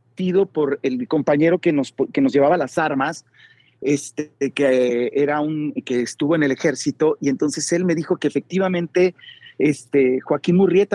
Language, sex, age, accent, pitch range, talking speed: Spanish, male, 40-59, Mexican, 135-175 Hz, 160 wpm